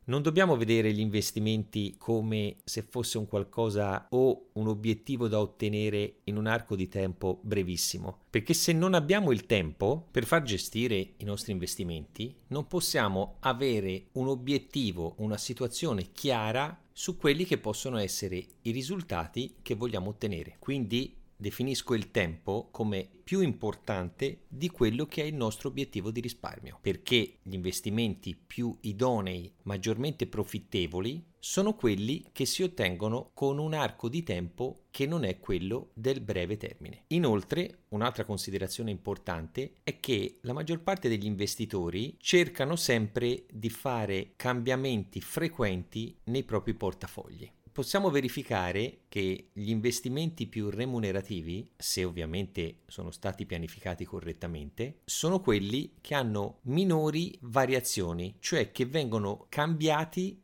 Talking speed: 135 wpm